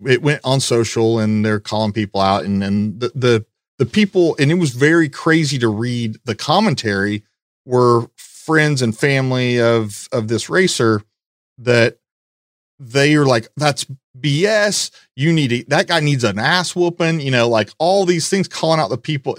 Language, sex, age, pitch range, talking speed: English, male, 40-59, 110-145 Hz, 175 wpm